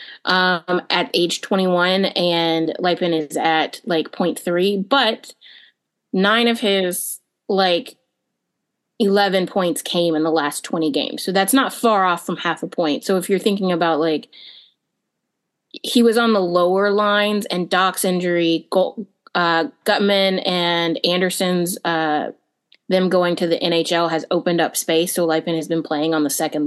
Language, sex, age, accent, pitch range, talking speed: English, female, 20-39, American, 165-190 Hz, 155 wpm